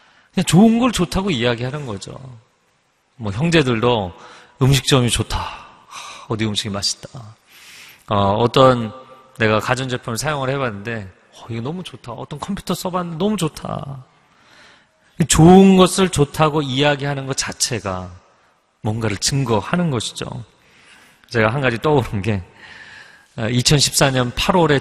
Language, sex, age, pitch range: Korean, male, 40-59, 110-155 Hz